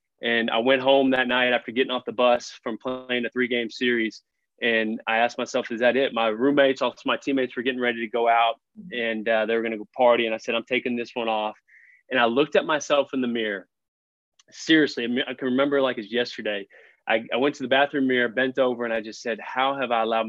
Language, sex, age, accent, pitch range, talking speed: English, male, 20-39, American, 115-130 Hz, 245 wpm